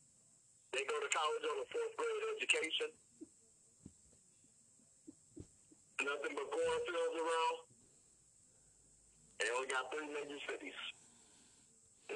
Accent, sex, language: American, male, English